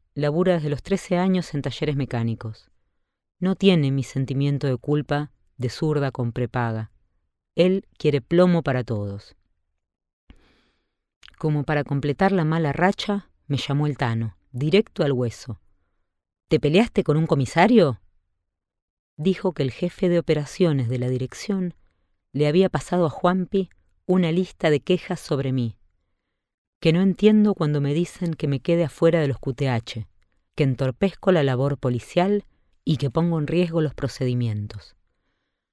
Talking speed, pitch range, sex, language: 145 wpm, 120-175 Hz, female, Spanish